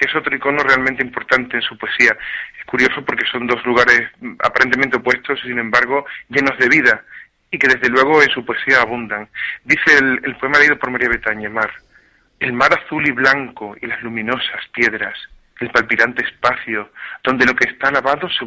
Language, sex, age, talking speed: Spanish, male, 40-59, 180 wpm